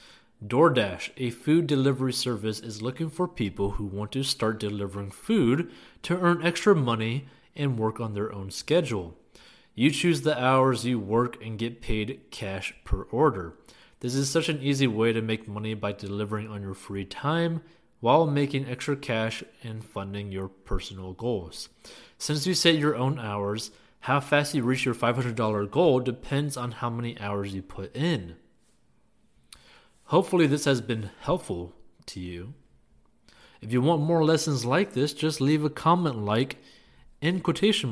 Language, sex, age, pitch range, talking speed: English, male, 30-49, 105-145 Hz, 165 wpm